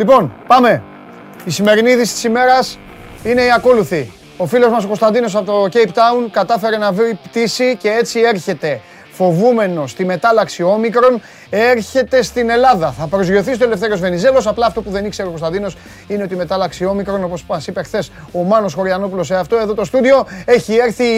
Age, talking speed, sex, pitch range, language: 30-49, 180 wpm, male, 185-230 Hz, Greek